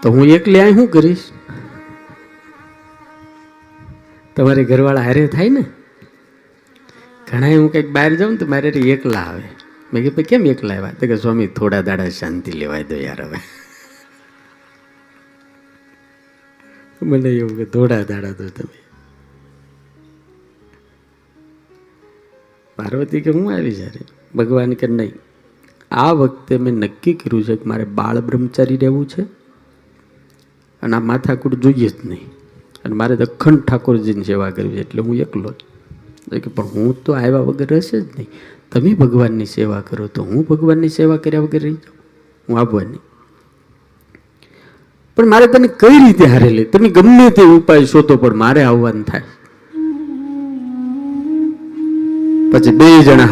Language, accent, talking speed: Hindi, native, 65 wpm